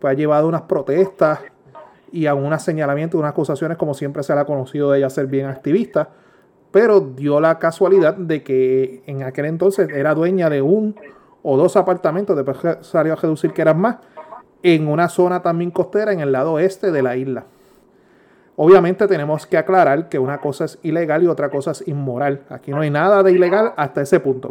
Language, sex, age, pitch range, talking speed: Spanish, male, 30-49, 145-175 Hz, 195 wpm